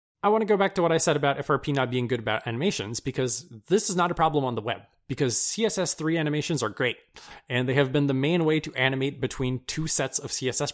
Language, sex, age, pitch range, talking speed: English, male, 20-39, 120-150 Hz, 245 wpm